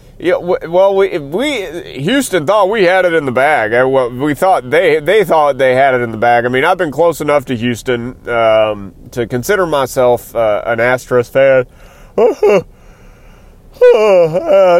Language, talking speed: English, 180 wpm